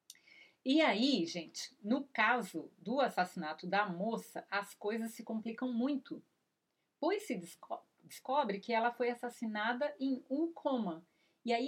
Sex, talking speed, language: female, 140 wpm, Portuguese